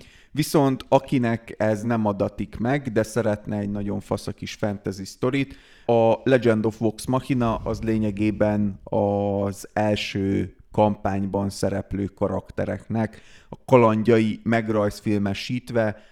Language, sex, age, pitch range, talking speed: Hungarian, male, 30-49, 100-110 Hz, 105 wpm